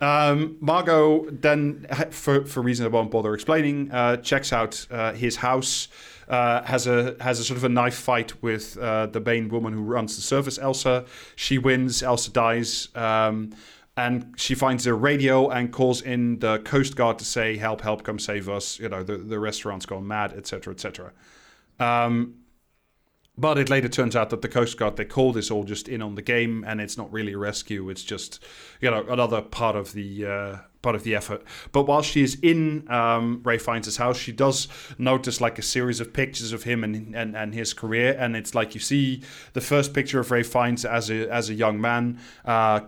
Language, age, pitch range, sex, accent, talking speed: English, 30-49, 110-130 Hz, male, British, 210 wpm